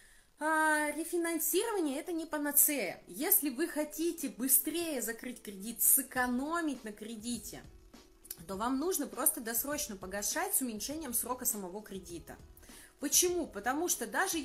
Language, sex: Russian, female